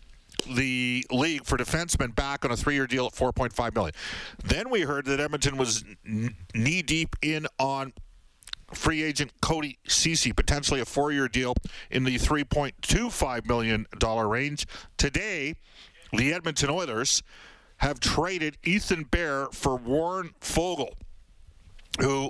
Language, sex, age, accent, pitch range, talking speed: English, male, 50-69, American, 120-150 Hz, 125 wpm